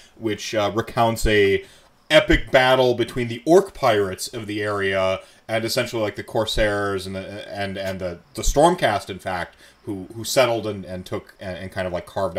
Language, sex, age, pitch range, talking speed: English, male, 30-49, 90-115 Hz, 190 wpm